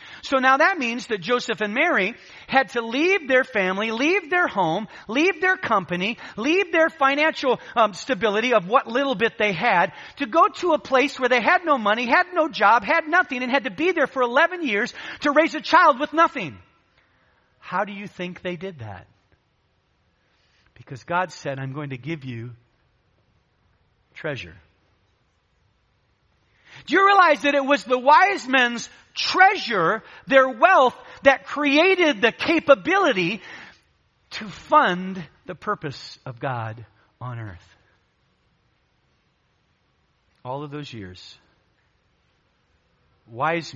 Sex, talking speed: male, 145 wpm